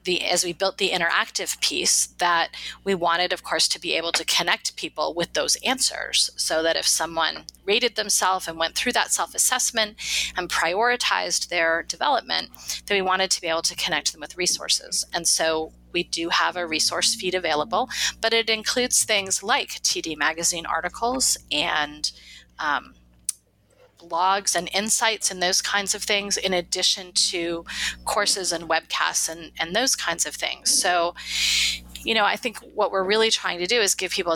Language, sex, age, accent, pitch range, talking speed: English, female, 30-49, American, 165-205 Hz, 175 wpm